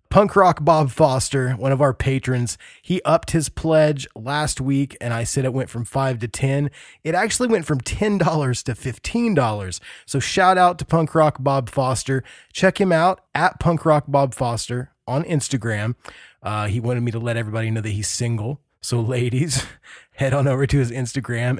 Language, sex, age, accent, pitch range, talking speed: English, male, 20-39, American, 120-160 Hz, 185 wpm